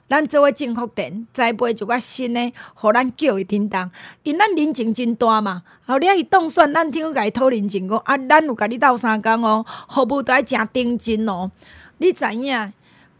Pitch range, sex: 220-280 Hz, female